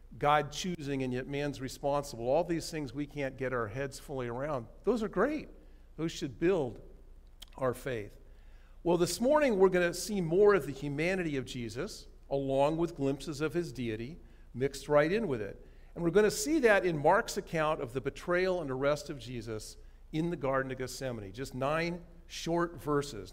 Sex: male